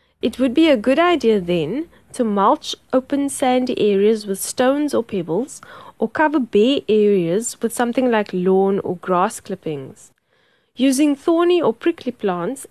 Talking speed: 150 wpm